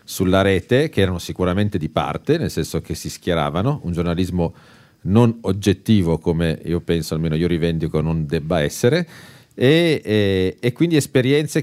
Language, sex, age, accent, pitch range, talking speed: Italian, male, 40-59, native, 80-115 Hz, 150 wpm